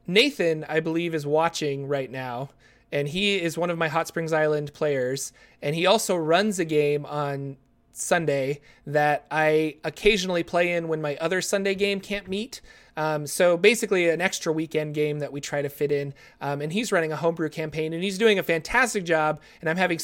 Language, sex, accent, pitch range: English, male, American, 150-180 Hz